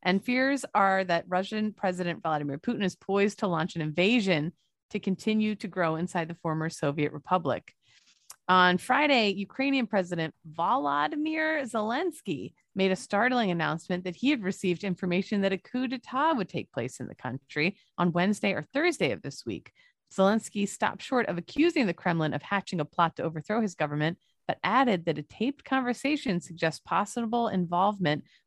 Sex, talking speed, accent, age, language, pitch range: female, 165 wpm, American, 30-49, English, 160-220 Hz